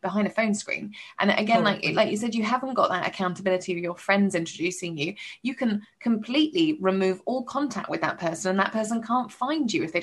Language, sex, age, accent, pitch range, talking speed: English, female, 20-39, British, 175-220 Hz, 220 wpm